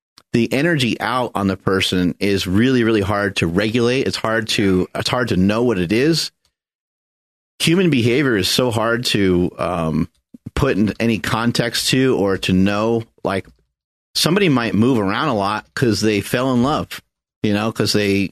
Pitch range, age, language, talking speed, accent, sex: 100-125 Hz, 30-49, English, 175 wpm, American, male